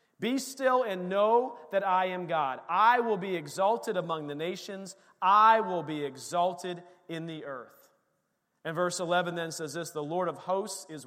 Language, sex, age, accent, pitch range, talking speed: English, male, 40-59, American, 150-185 Hz, 180 wpm